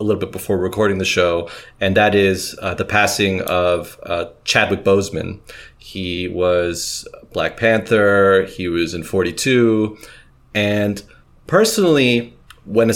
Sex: male